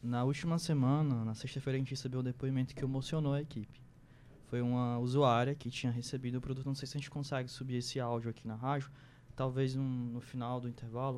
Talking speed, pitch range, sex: 215 wpm, 135-165 Hz, male